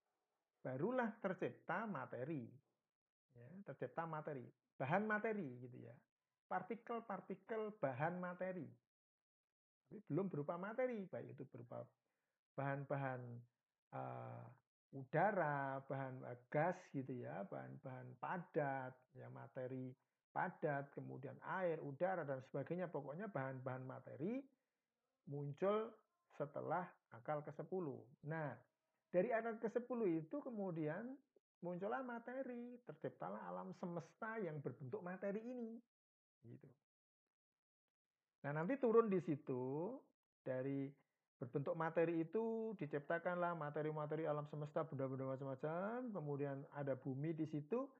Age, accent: 50-69, native